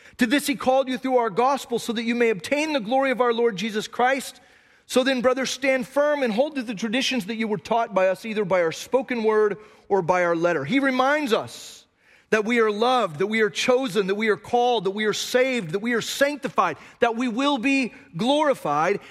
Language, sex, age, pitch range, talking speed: English, male, 30-49, 175-255 Hz, 230 wpm